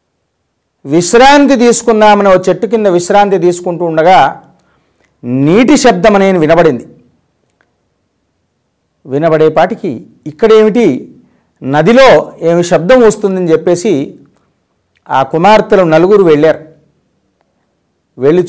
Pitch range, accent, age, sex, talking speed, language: 155-215 Hz, native, 50-69, male, 80 wpm, Telugu